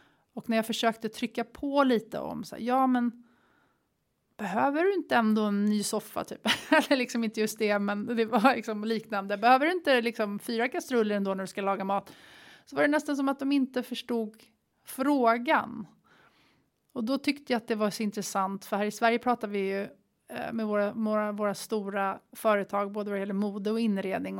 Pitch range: 205-255 Hz